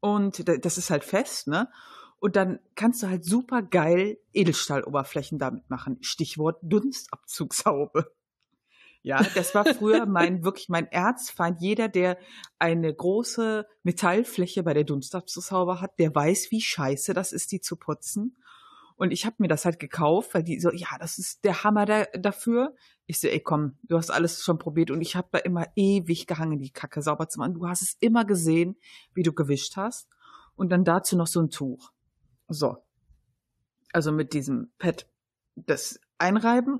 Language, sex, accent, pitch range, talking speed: German, female, German, 165-215 Hz, 170 wpm